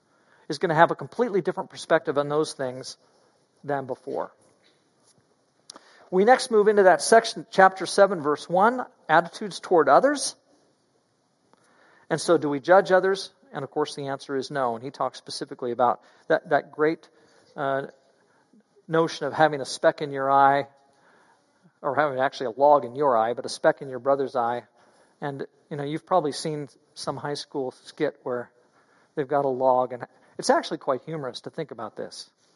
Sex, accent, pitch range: male, American, 130-180 Hz